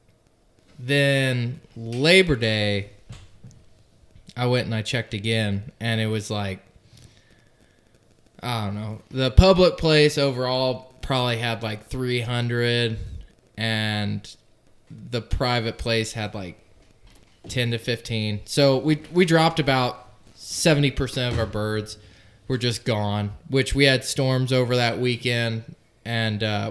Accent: American